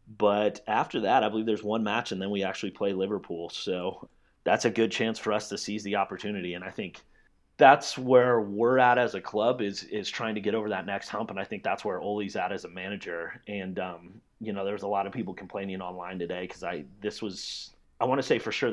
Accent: American